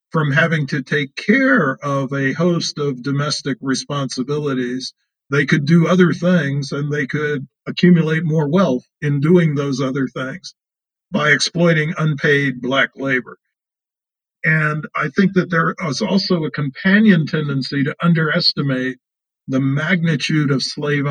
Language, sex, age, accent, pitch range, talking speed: English, male, 50-69, American, 135-170 Hz, 135 wpm